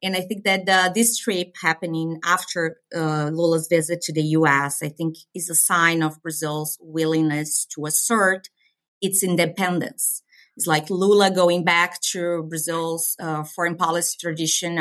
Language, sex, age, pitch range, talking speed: English, female, 30-49, 160-185 Hz, 155 wpm